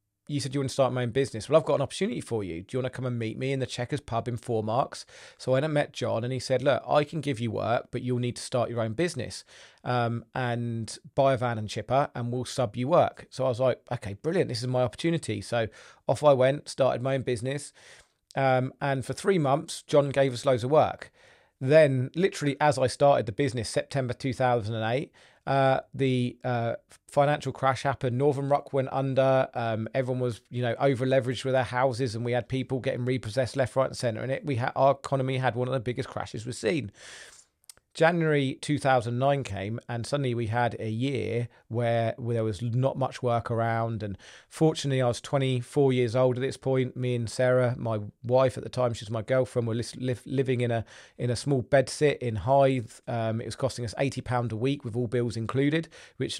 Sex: male